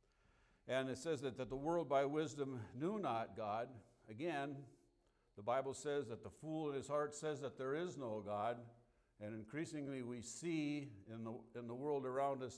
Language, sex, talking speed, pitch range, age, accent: English, male, 185 wpm, 110-140 Hz, 60-79, American